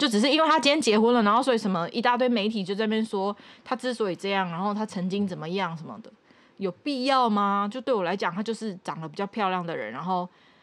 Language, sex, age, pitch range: Chinese, female, 20-39, 170-220 Hz